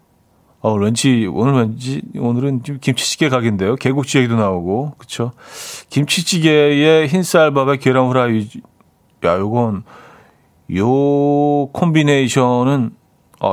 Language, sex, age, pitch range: Korean, male, 40-59, 110-155 Hz